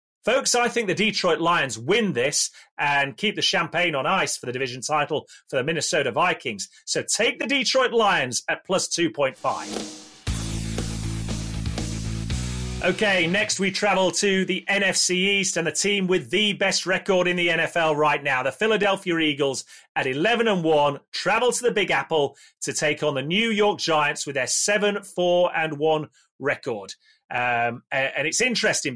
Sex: male